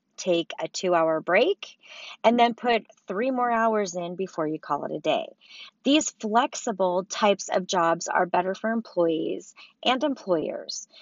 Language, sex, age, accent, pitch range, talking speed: English, female, 40-59, American, 185-250 Hz, 150 wpm